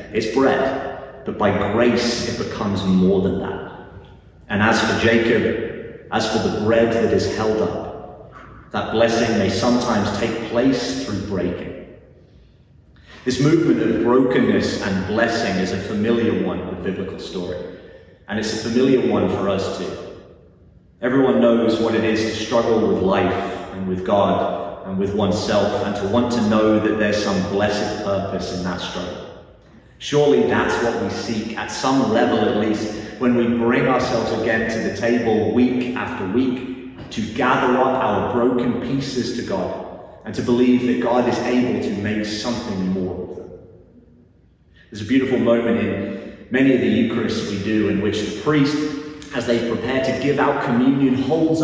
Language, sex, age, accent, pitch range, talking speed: English, male, 30-49, British, 105-125 Hz, 170 wpm